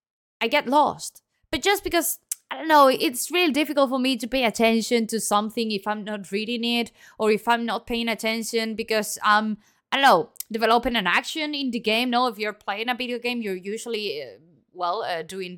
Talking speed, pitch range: 210 wpm, 200-255 Hz